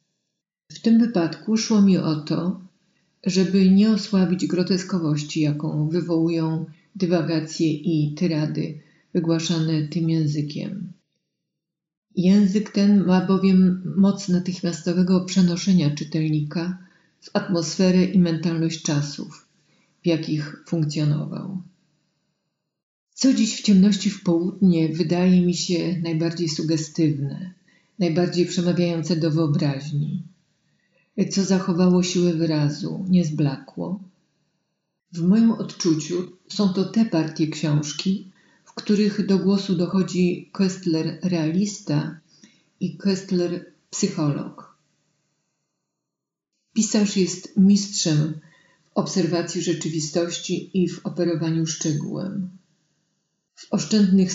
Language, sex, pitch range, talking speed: Polish, female, 160-190 Hz, 95 wpm